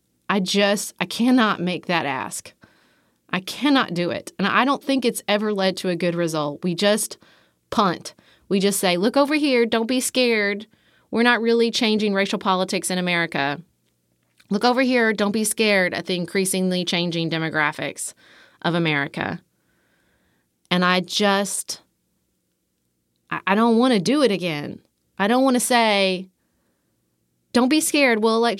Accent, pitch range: American, 175-230 Hz